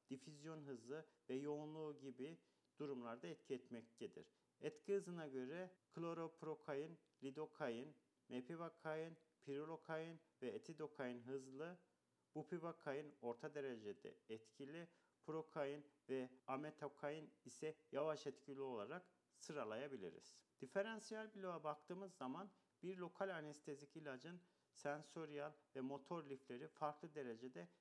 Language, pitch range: Turkish, 135-155 Hz